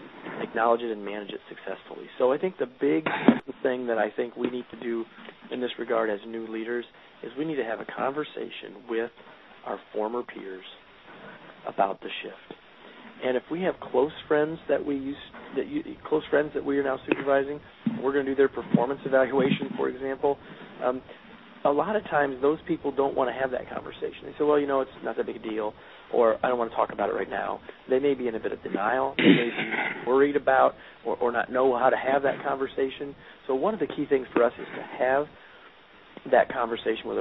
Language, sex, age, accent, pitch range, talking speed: English, male, 40-59, American, 120-145 Hz, 220 wpm